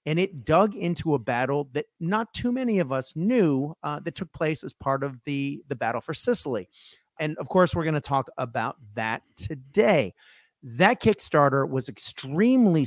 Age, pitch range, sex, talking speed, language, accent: 30-49, 125-175 Hz, male, 180 wpm, English, American